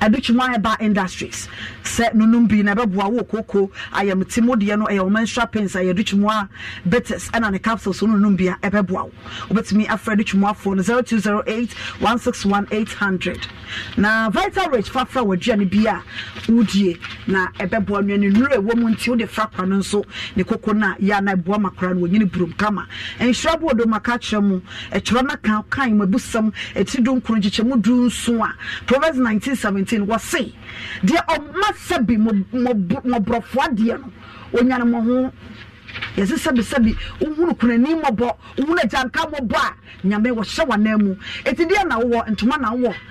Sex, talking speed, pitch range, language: female, 155 wpm, 200-250 Hz, English